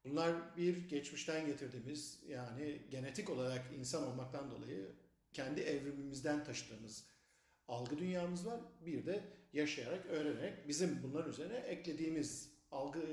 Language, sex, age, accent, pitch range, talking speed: Turkish, male, 50-69, native, 140-175 Hz, 115 wpm